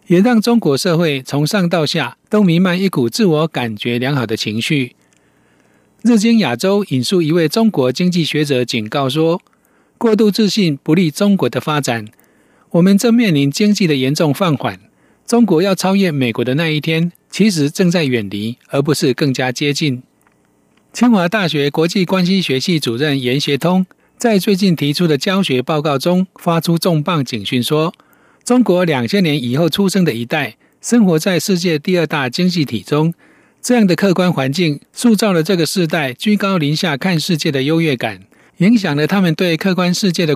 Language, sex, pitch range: Chinese, male, 140-190 Hz